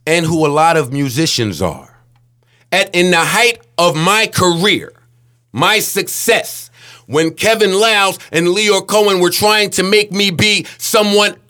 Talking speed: 150 wpm